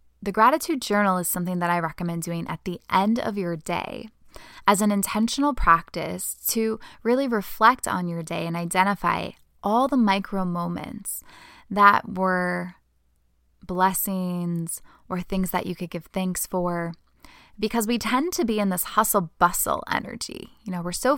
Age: 10-29